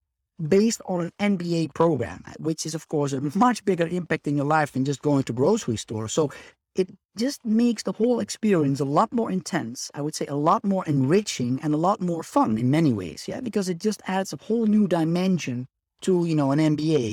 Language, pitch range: English, 140-185 Hz